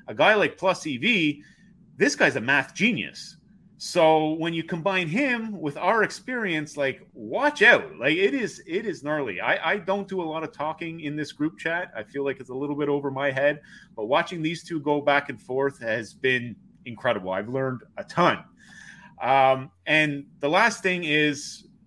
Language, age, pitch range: English, 30-49, 130-185 Hz